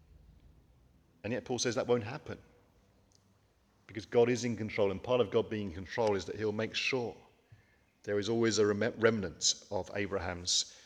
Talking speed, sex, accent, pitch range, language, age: 170 wpm, male, British, 90-110 Hz, English, 40-59